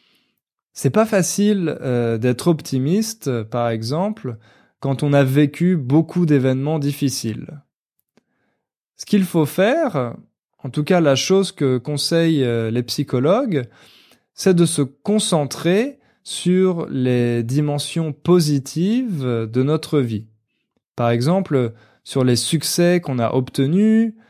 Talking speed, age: 115 wpm, 20-39